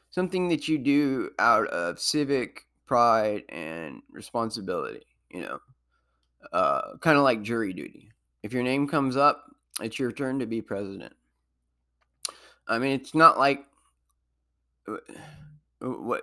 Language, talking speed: English, 130 wpm